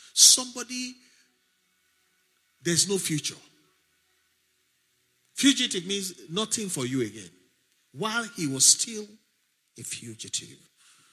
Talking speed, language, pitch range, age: 85 wpm, English, 135-215 Hz, 50-69